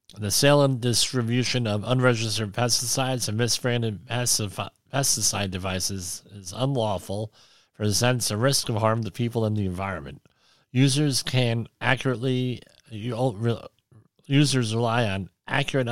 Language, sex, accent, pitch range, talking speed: English, male, American, 100-130 Hz, 115 wpm